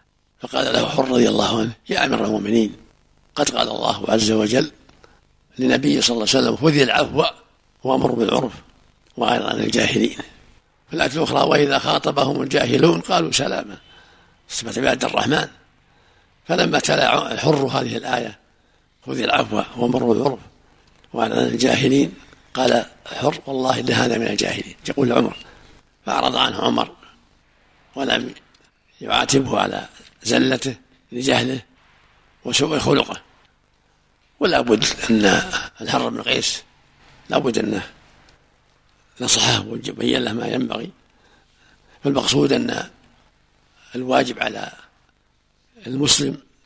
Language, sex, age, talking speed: Arabic, male, 60-79, 110 wpm